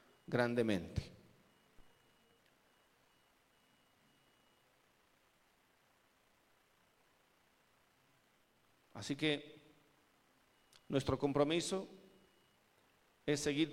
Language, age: Spanish, 50-69